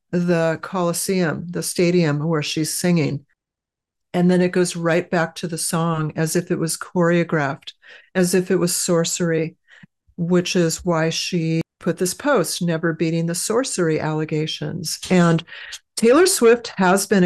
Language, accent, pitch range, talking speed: English, American, 165-190 Hz, 150 wpm